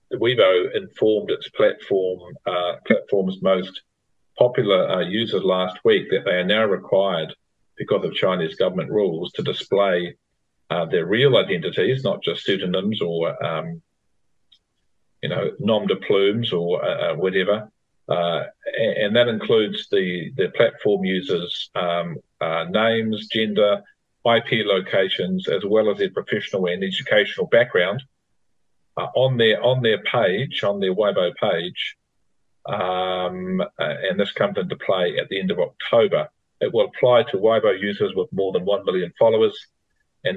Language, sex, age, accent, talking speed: English, male, 50-69, Australian, 145 wpm